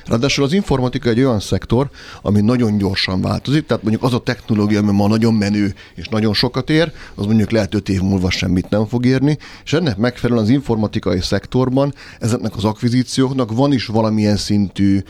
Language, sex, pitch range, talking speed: Hungarian, male, 100-120 Hz, 185 wpm